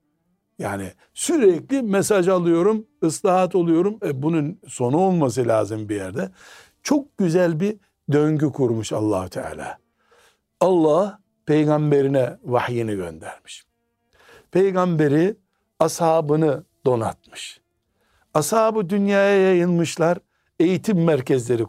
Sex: male